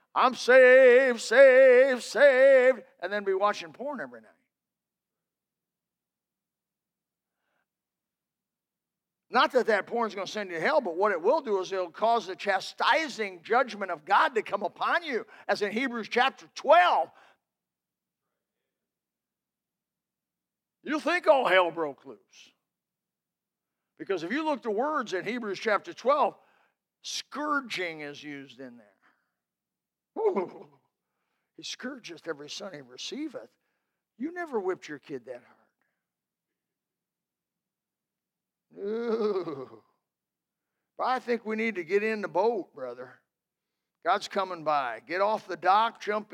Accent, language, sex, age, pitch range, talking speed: American, English, male, 50-69, 190-270 Hz, 125 wpm